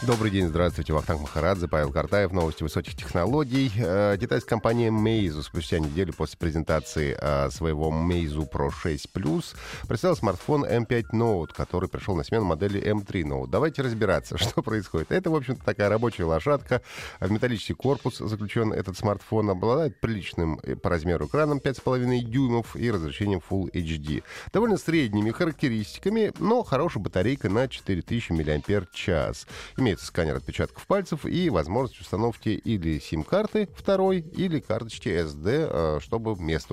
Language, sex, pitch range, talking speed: Russian, male, 85-130 Hz, 135 wpm